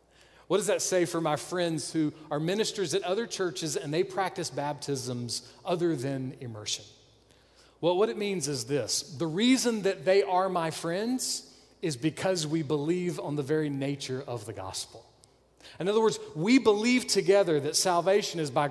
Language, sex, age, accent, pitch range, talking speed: English, male, 40-59, American, 140-200 Hz, 175 wpm